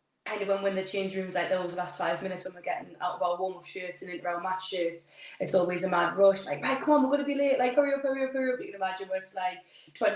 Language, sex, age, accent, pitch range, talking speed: English, female, 10-29, British, 175-195 Hz, 305 wpm